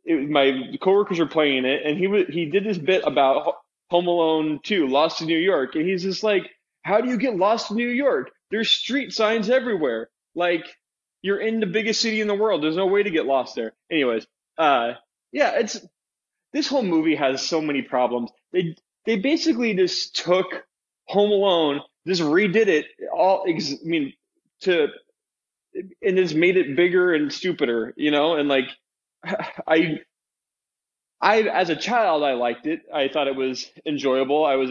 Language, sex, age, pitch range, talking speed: English, male, 20-39, 140-205 Hz, 180 wpm